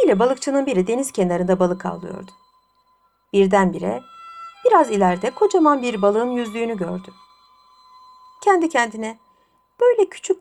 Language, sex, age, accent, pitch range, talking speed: Turkish, female, 60-79, native, 185-285 Hz, 110 wpm